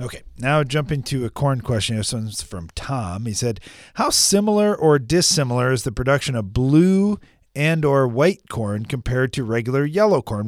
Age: 40-59